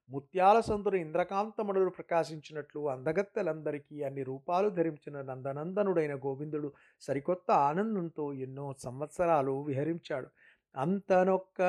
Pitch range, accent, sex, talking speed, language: 145-185 Hz, native, male, 85 wpm, Telugu